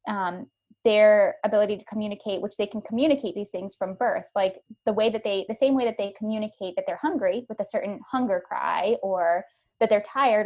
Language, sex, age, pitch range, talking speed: English, female, 20-39, 190-225 Hz, 205 wpm